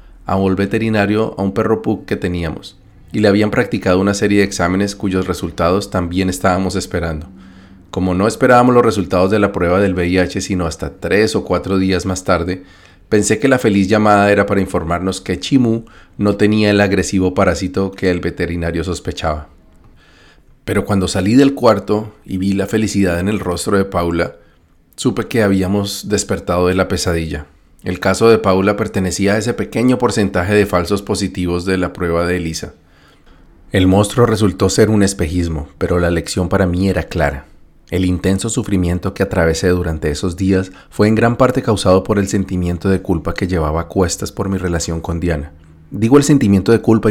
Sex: male